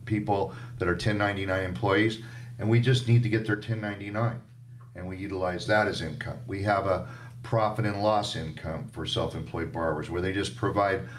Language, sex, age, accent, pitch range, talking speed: English, male, 50-69, American, 95-120 Hz, 175 wpm